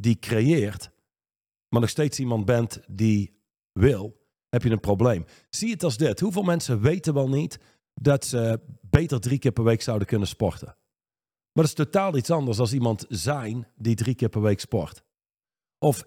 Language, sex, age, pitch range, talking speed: Dutch, male, 40-59, 115-145 Hz, 180 wpm